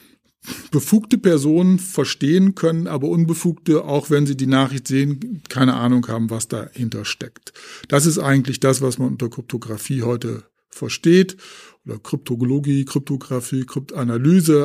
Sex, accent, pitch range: male, German, 130-160 Hz